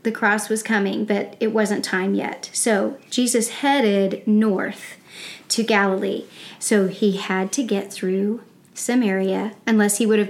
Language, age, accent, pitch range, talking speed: English, 40-59, American, 205-235 Hz, 150 wpm